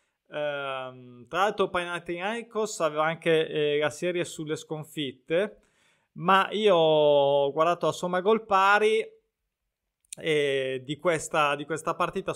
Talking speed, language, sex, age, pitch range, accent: 110 wpm, Italian, male, 20-39, 150-190 Hz, native